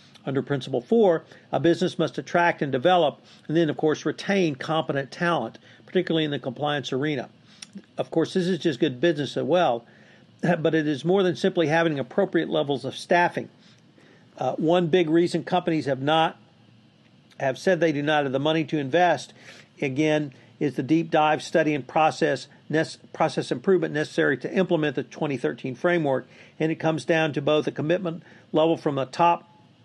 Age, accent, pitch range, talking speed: 50-69, American, 135-165 Hz, 175 wpm